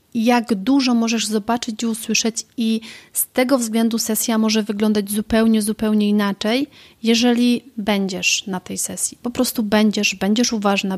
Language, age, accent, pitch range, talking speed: Polish, 30-49, native, 195-230 Hz, 140 wpm